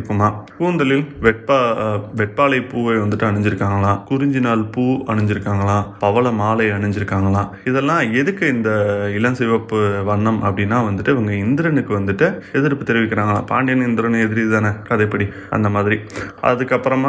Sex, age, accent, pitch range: male, 20-39, native, 105-125 Hz